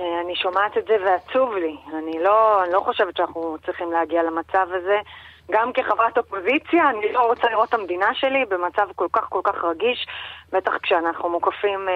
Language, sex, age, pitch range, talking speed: Hebrew, female, 30-49, 180-240 Hz, 175 wpm